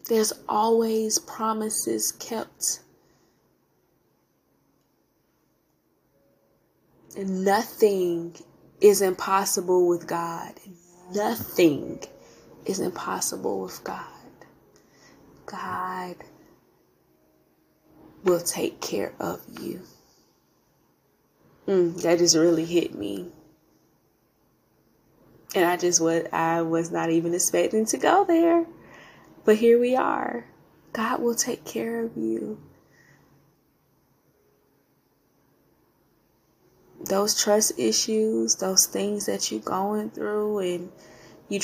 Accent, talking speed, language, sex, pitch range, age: American, 85 wpm, English, female, 170-210 Hz, 20-39